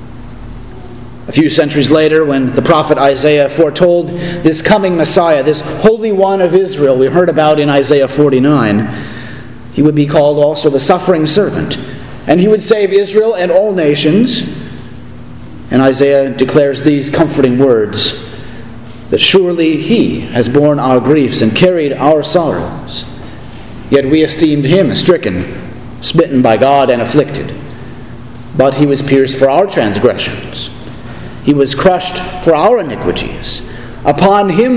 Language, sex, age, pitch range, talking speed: English, male, 40-59, 130-180 Hz, 140 wpm